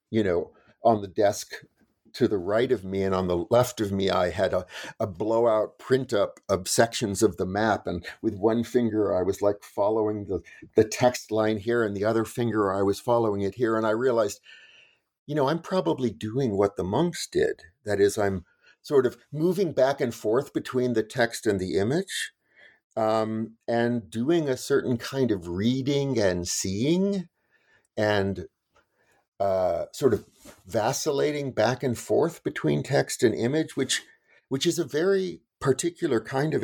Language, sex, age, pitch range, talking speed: English, male, 50-69, 100-135 Hz, 175 wpm